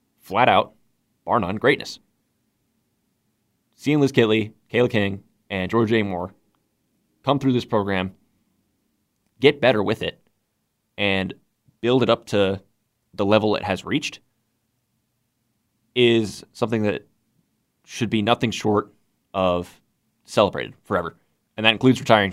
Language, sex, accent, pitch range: English, male, American, 100-115 Hz